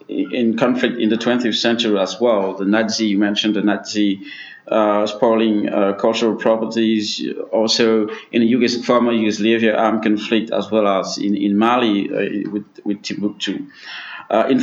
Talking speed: 155 wpm